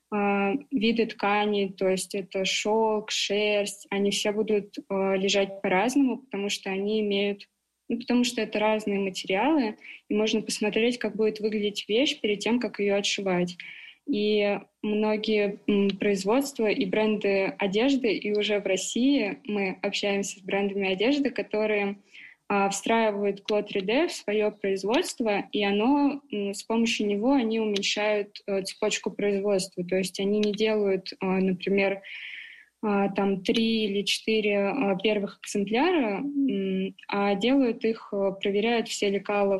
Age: 20-39